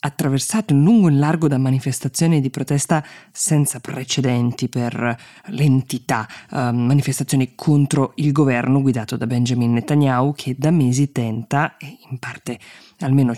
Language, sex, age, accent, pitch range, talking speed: Italian, female, 20-39, native, 130-150 Hz, 140 wpm